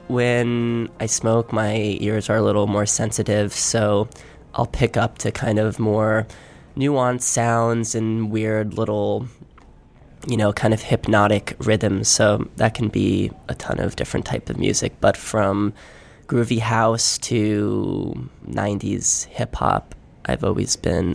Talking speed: 140 wpm